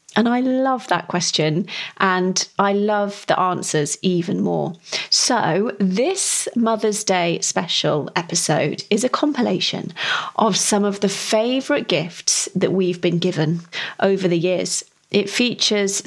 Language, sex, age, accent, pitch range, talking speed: English, female, 30-49, British, 180-235 Hz, 135 wpm